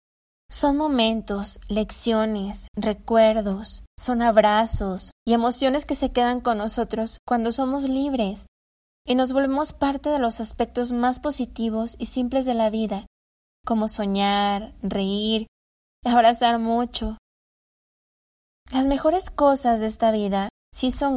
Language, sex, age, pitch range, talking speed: English, female, 20-39, 215-250 Hz, 120 wpm